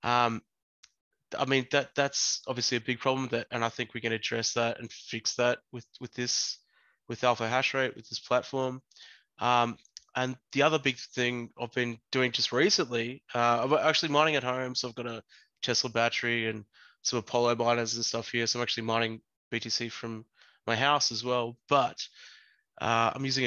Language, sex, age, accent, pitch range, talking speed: English, male, 20-39, Australian, 115-130 Hz, 185 wpm